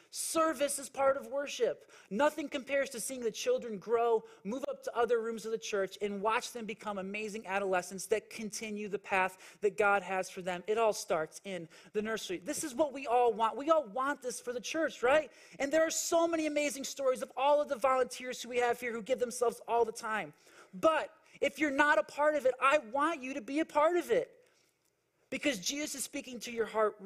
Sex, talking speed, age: male, 225 wpm, 30-49